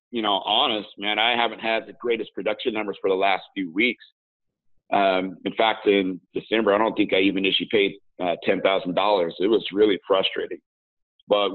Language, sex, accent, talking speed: English, male, American, 185 wpm